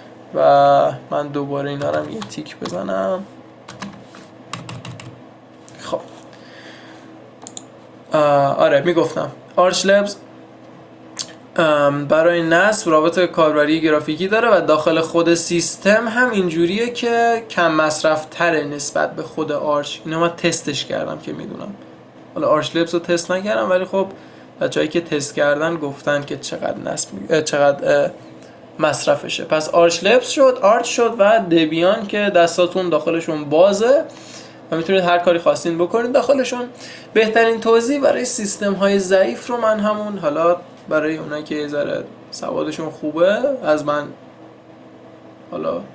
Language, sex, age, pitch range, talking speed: Persian, male, 20-39, 145-200 Hz, 120 wpm